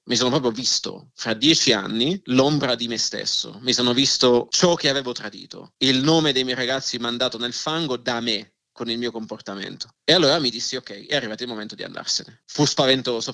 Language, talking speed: Italian, 205 wpm